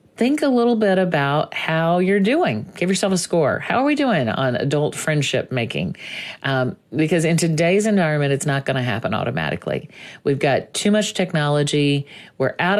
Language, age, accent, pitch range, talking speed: English, 40-59, American, 140-185 Hz, 180 wpm